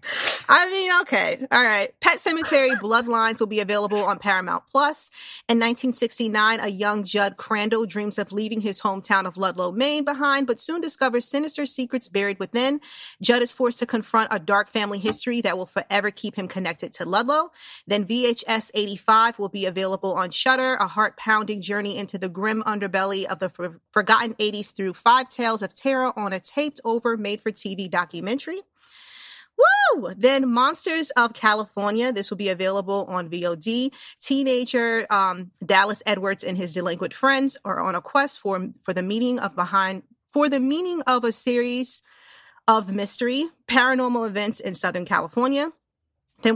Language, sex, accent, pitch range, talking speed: English, female, American, 195-250 Hz, 160 wpm